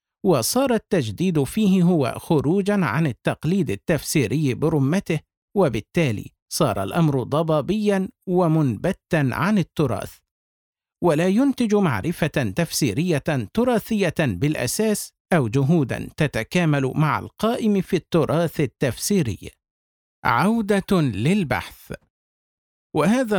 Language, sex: Arabic, male